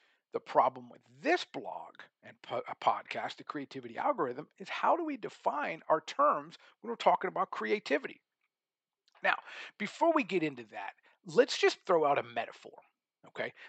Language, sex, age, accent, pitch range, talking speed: English, male, 50-69, American, 130-180 Hz, 155 wpm